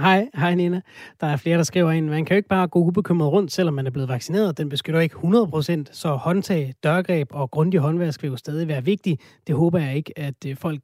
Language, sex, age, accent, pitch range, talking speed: Danish, male, 30-49, native, 150-185 Hz, 240 wpm